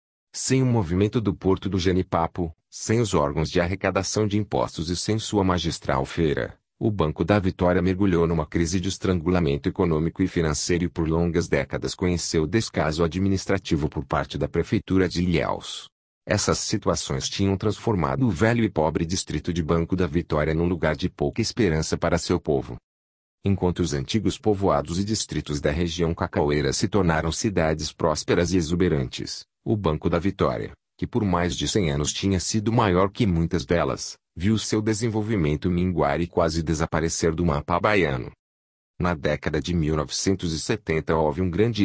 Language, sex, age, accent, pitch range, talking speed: Portuguese, male, 40-59, Brazilian, 80-95 Hz, 165 wpm